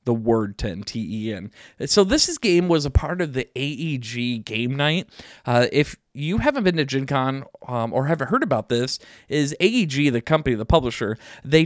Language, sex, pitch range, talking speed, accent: English, male, 120-160 Hz, 185 wpm, American